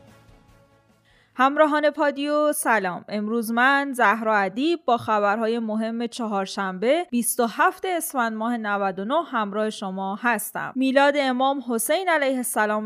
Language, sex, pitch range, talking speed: Persian, female, 150-235 Hz, 105 wpm